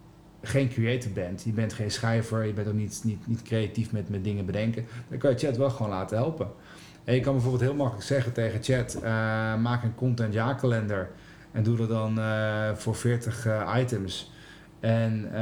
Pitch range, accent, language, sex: 110-125 Hz, Dutch, Dutch, male